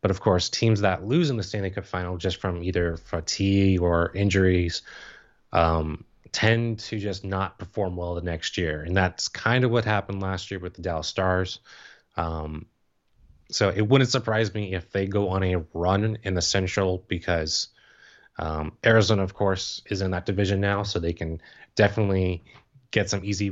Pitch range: 90-105 Hz